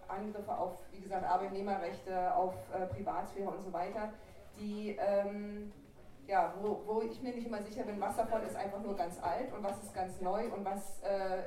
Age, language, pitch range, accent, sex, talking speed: 20-39, German, 185-215 Hz, German, female, 190 wpm